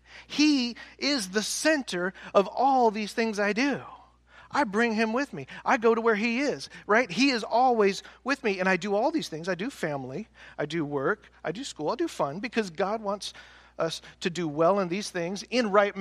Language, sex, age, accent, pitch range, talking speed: English, male, 40-59, American, 150-215 Hz, 215 wpm